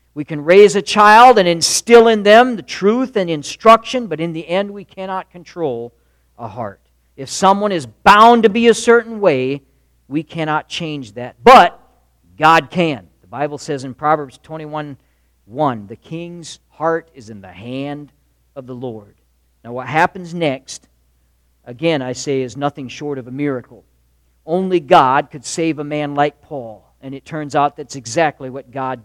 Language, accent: English, American